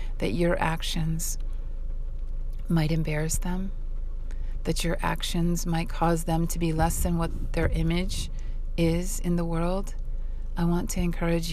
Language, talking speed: English, 140 wpm